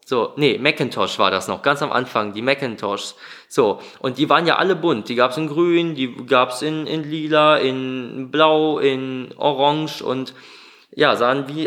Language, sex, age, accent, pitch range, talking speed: German, male, 20-39, German, 130-175 Hz, 190 wpm